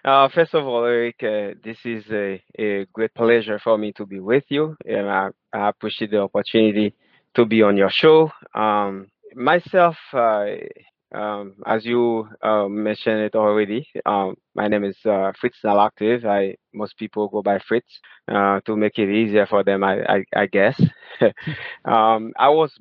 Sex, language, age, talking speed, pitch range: male, English, 20-39, 170 wpm, 100-110 Hz